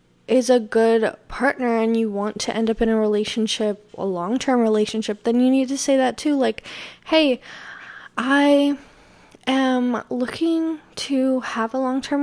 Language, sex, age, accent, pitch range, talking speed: English, female, 10-29, American, 220-265 Hz, 165 wpm